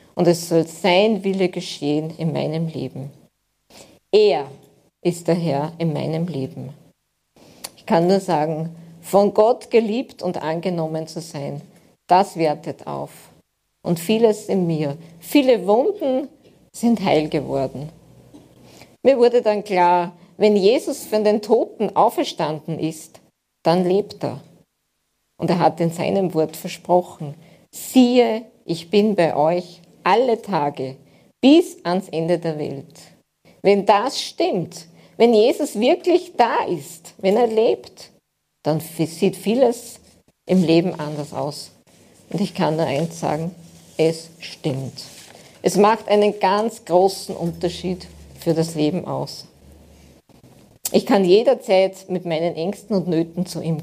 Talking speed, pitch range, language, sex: 130 wpm, 160-205 Hz, German, female